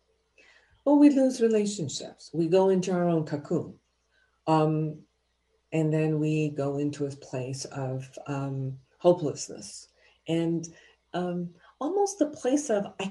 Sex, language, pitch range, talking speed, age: female, English, 145-205 Hz, 130 wpm, 50-69